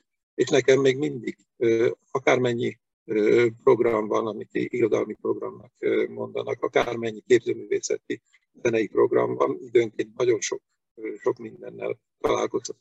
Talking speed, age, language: 105 wpm, 50-69, Hungarian